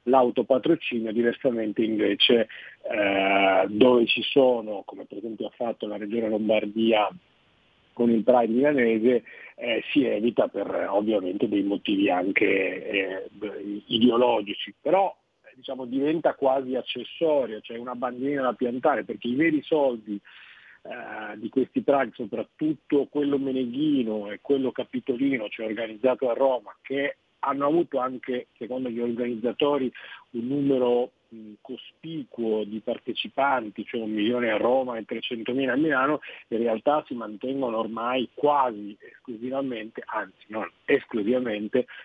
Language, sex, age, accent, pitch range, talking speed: Italian, male, 40-59, native, 115-140 Hz, 130 wpm